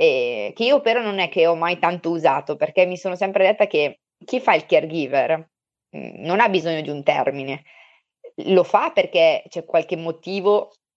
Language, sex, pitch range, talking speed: Italian, female, 160-200 Hz, 175 wpm